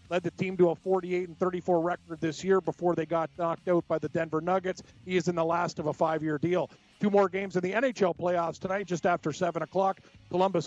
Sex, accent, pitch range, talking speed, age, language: male, American, 165-190 Hz, 235 wpm, 40-59, English